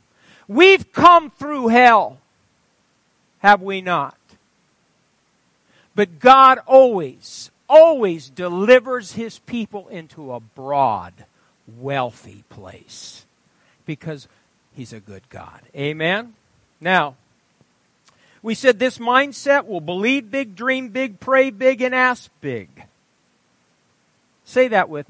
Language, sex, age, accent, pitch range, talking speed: English, male, 50-69, American, 155-260 Hz, 105 wpm